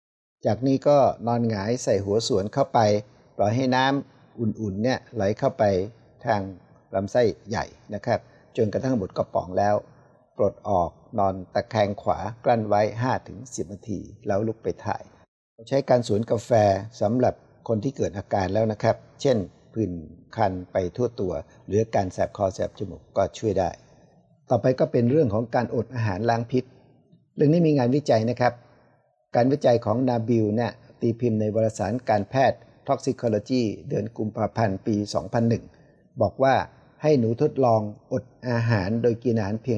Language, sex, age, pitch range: Thai, male, 60-79, 105-125 Hz